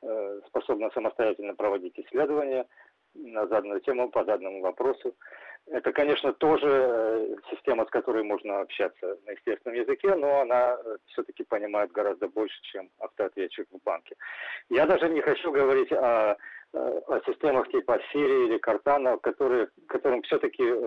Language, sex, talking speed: Russian, male, 130 wpm